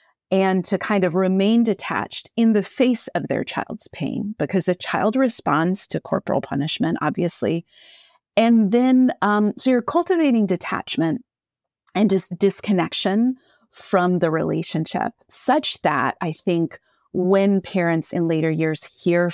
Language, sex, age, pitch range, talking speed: English, female, 30-49, 165-210 Hz, 140 wpm